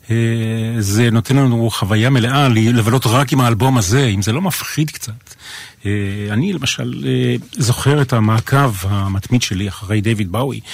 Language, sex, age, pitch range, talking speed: Hebrew, male, 40-59, 105-130 Hz, 140 wpm